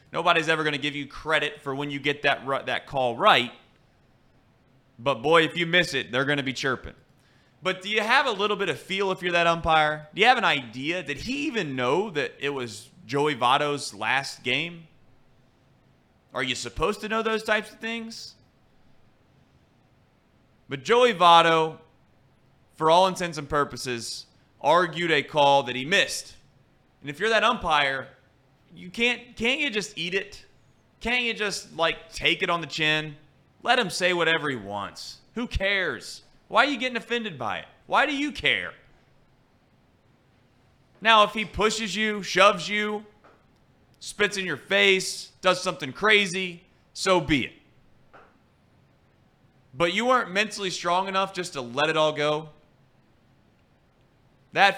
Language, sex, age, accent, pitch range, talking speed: English, male, 30-49, American, 135-195 Hz, 160 wpm